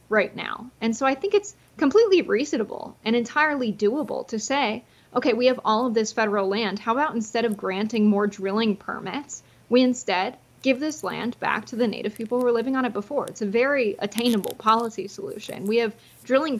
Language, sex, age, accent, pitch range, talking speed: English, female, 20-39, American, 205-245 Hz, 200 wpm